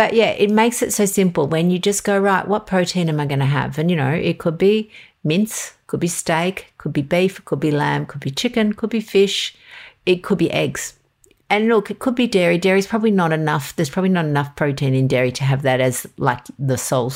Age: 50-69